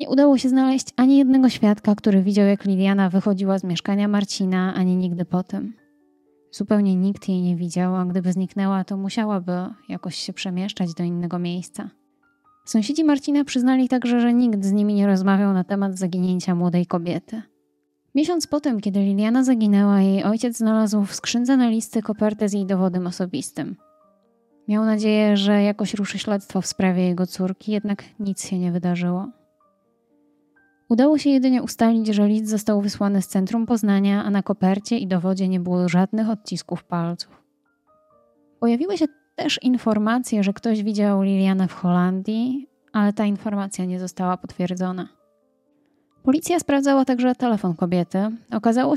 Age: 20-39